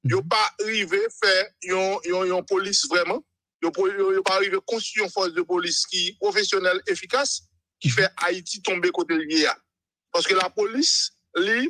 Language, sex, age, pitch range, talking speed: French, male, 50-69, 190-270 Hz, 165 wpm